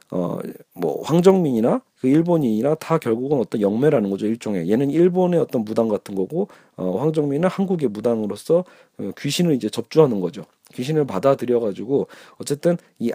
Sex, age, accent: male, 40-59, native